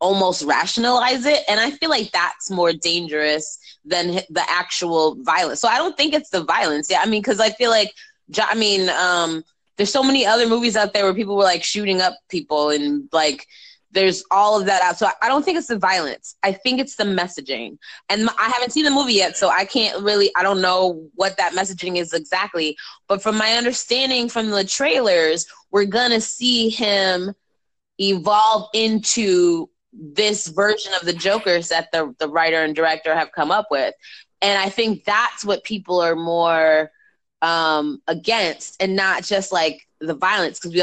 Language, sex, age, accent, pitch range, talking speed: English, female, 20-39, American, 170-220 Hz, 190 wpm